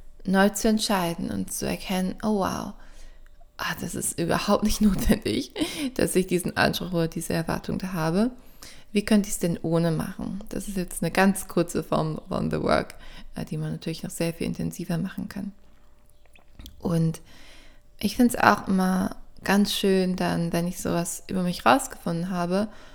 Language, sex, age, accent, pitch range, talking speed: German, female, 20-39, German, 165-205 Hz, 170 wpm